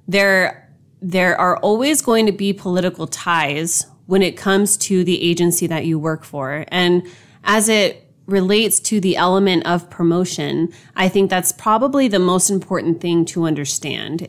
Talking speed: 160 wpm